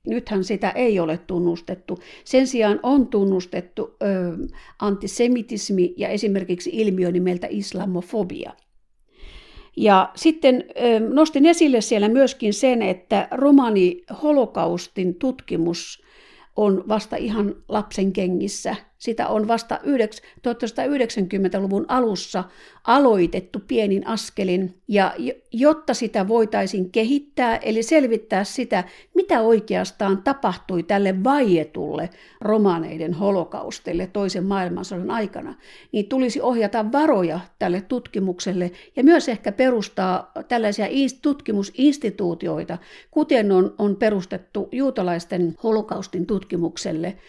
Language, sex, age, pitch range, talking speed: Finnish, female, 50-69, 185-250 Hz, 95 wpm